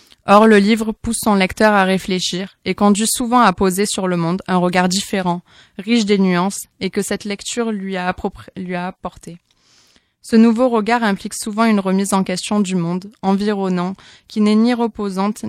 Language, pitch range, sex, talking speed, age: French, 185-215 Hz, female, 180 wpm, 20-39